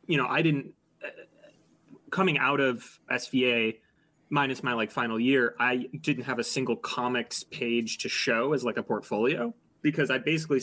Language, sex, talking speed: English, male, 170 wpm